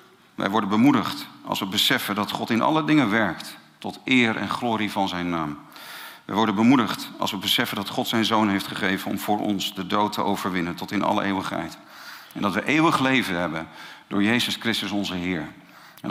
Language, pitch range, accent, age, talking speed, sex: Dutch, 100-125 Hz, Dutch, 50-69, 200 wpm, male